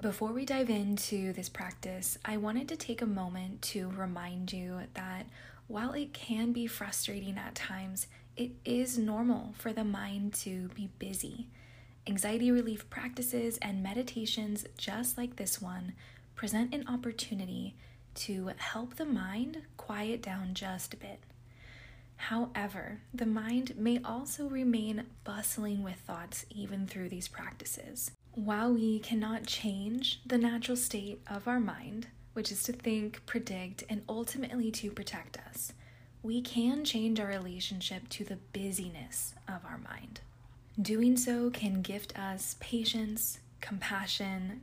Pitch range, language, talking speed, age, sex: 170-225 Hz, English, 140 wpm, 20-39, female